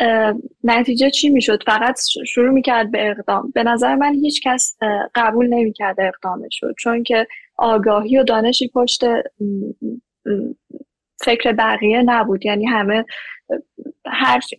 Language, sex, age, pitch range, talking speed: Persian, female, 10-29, 215-250 Hz, 120 wpm